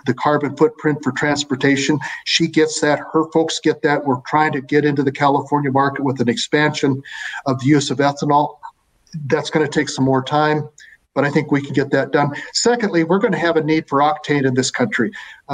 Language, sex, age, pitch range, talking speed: English, male, 50-69, 135-155 Hz, 210 wpm